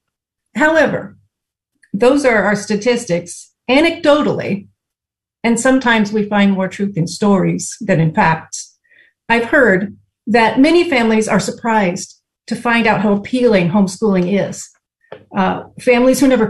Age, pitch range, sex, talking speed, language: 40-59, 195-250 Hz, female, 125 wpm, English